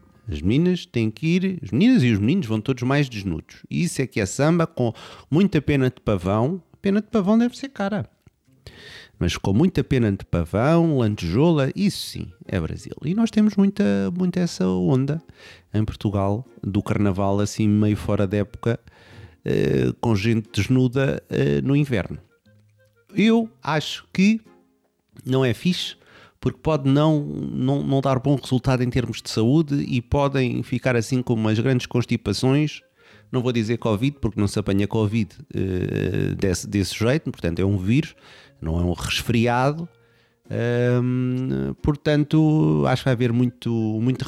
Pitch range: 105-145 Hz